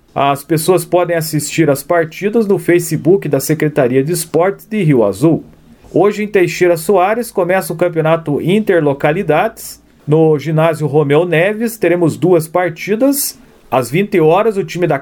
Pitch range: 145-185 Hz